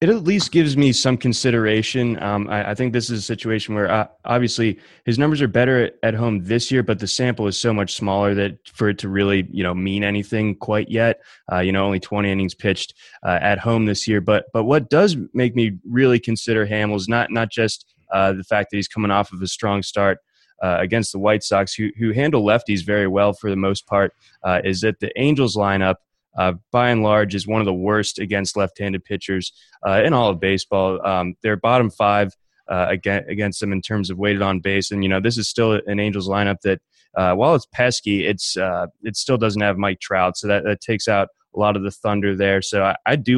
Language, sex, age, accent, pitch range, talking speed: English, male, 20-39, American, 100-115 Hz, 235 wpm